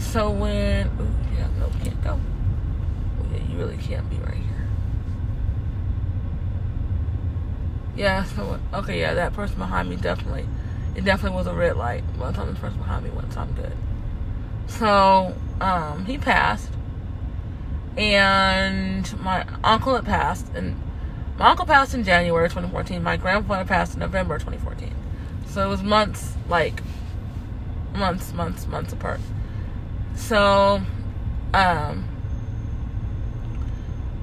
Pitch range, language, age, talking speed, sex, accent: 95-110 Hz, English, 20-39, 130 wpm, female, American